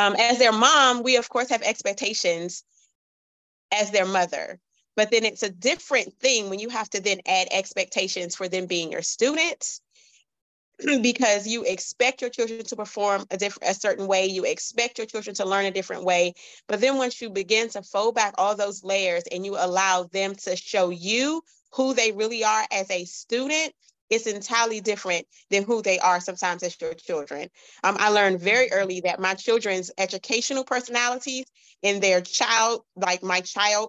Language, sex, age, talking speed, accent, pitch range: English, female, 30-49, 180 wpm, American, 185-235 Hz